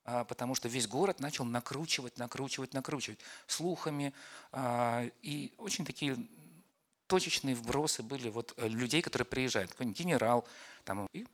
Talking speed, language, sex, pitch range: 120 wpm, Russian, male, 110-155 Hz